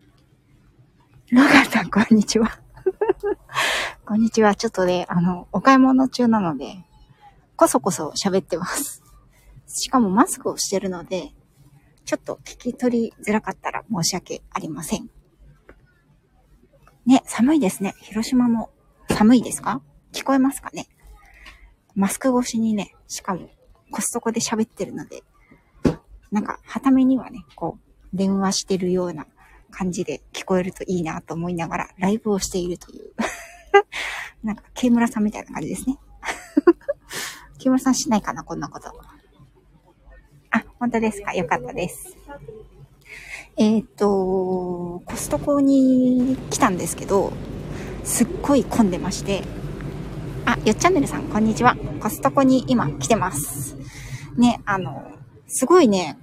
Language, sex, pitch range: Japanese, female, 175-260 Hz